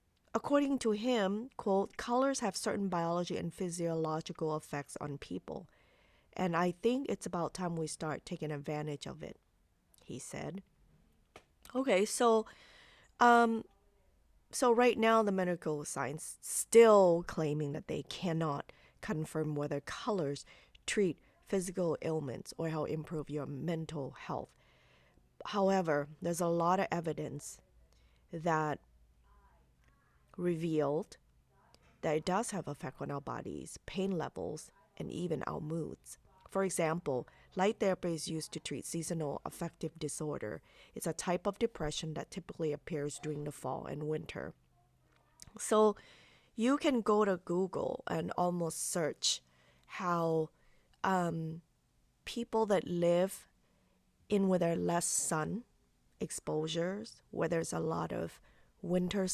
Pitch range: 150-195 Hz